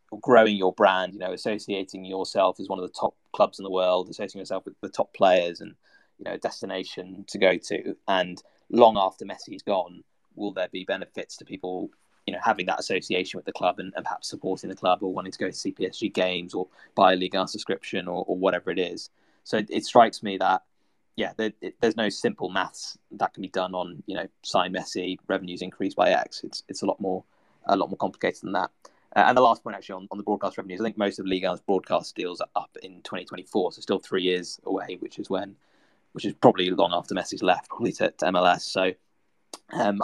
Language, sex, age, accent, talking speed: English, male, 20-39, British, 225 wpm